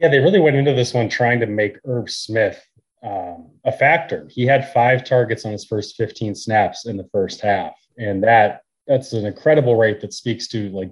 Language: English